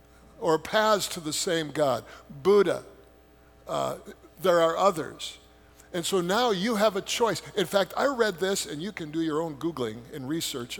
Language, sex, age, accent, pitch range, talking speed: English, male, 50-69, American, 135-200 Hz, 180 wpm